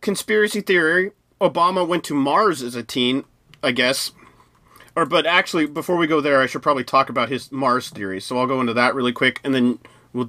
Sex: male